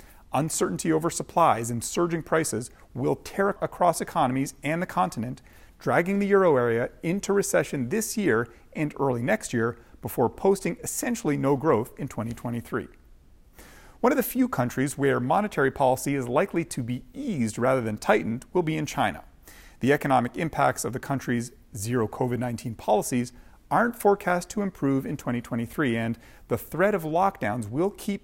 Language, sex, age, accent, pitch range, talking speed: English, male, 40-59, American, 120-175 Hz, 155 wpm